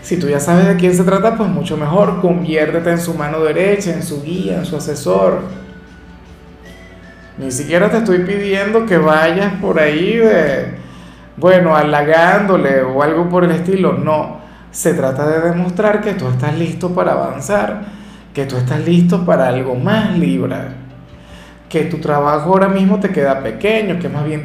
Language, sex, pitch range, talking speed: Spanish, male, 140-190 Hz, 165 wpm